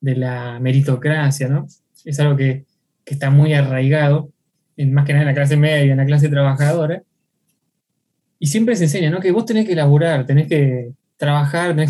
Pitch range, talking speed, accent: 140-165 Hz, 185 wpm, Argentinian